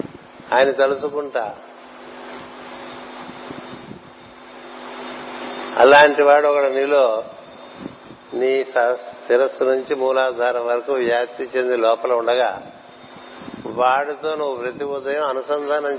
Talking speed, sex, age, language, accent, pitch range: 75 wpm, male, 60-79, Telugu, native, 125-145 Hz